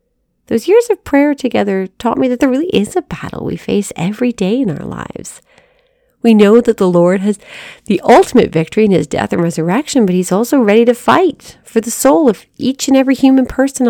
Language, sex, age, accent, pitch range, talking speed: English, female, 40-59, American, 175-260 Hz, 210 wpm